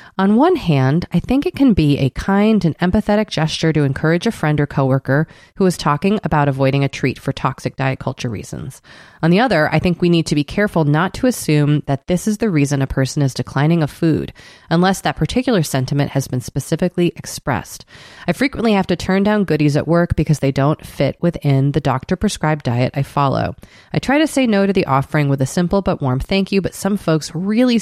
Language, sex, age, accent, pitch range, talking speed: English, female, 30-49, American, 140-190 Hz, 220 wpm